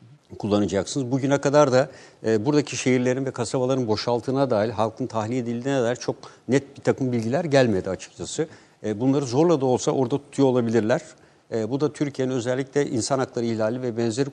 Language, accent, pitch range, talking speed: Turkish, native, 115-140 Hz, 165 wpm